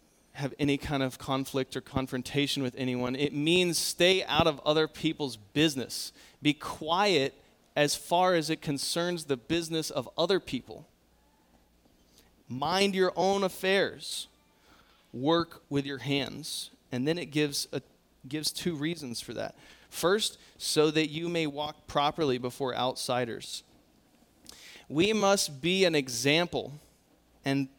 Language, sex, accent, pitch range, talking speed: English, male, American, 130-160 Hz, 135 wpm